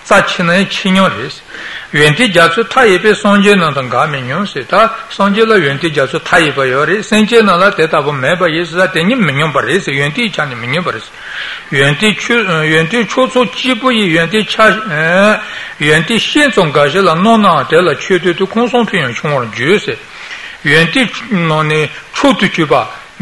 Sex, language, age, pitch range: male, Italian, 60-79, 155-210 Hz